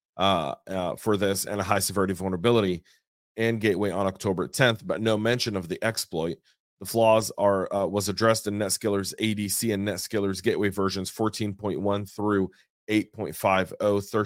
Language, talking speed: English, 150 wpm